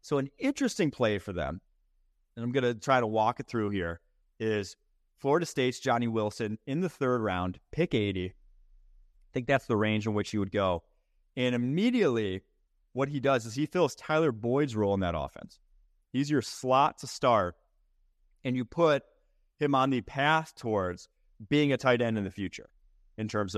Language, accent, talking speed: English, American, 185 wpm